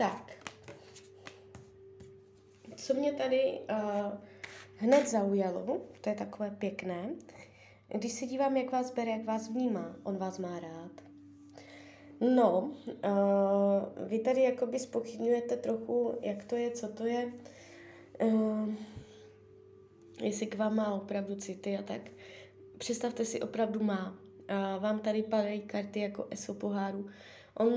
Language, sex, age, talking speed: Czech, female, 20-39, 130 wpm